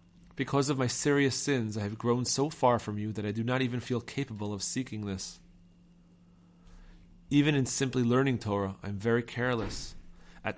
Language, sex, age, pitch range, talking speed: English, male, 40-59, 95-125 Hz, 180 wpm